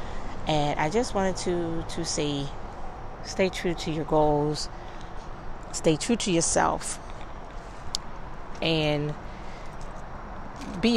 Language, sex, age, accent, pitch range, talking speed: English, female, 30-49, American, 150-175 Hz, 100 wpm